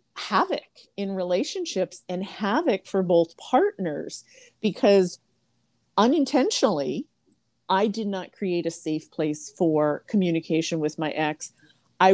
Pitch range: 165-215 Hz